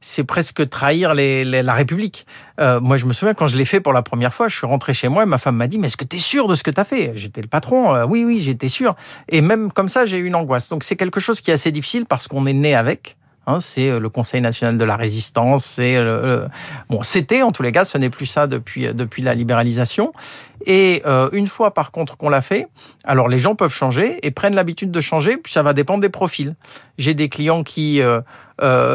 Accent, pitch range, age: French, 130-160 Hz, 50-69